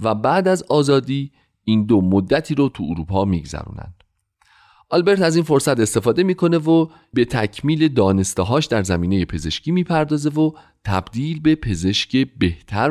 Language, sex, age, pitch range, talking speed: Persian, male, 40-59, 95-145 Hz, 140 wpm